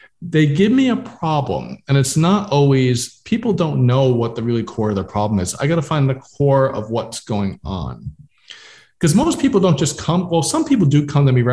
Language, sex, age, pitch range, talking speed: English, male, 40-59, 115-145 Hz, 230 wpm